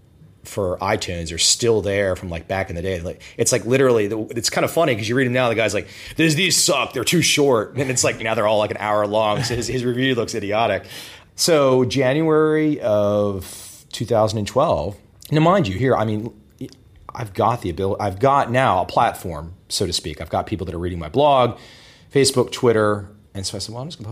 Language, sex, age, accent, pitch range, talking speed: English, male, 30-49, American, 85-115 Hz, 220 wpm